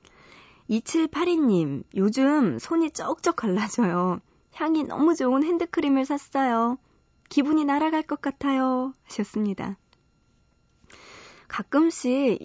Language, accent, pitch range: Korean, native, 190-275 Hz